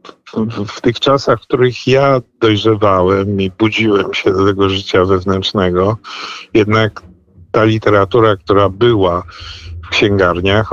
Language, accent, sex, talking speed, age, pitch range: Polish, native, male, 125 wpm, 50-69, 95-110 Hz